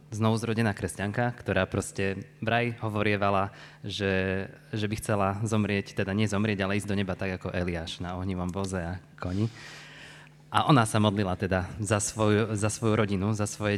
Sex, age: male, 20-39